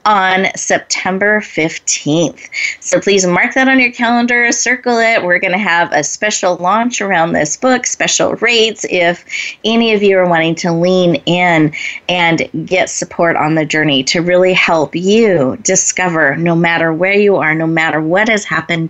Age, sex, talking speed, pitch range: 30-49, female, 170 wpm, 165-220 Hz